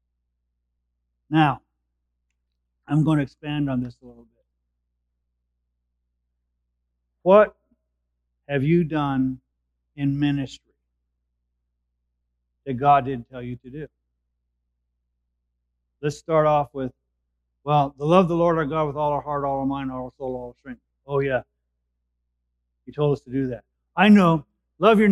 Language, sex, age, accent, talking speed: English, male, 50-69, American, 145 wpm